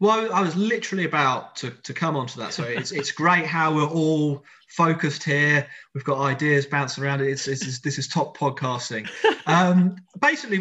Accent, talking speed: British, 185 wpm